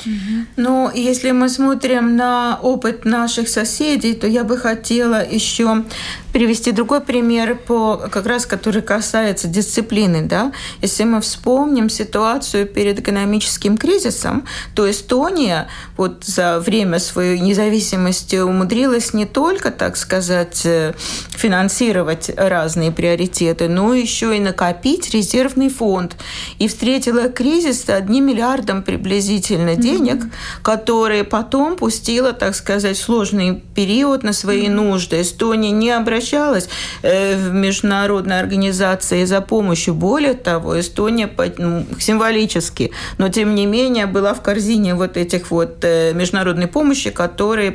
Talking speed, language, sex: 120 wpm, Russian, female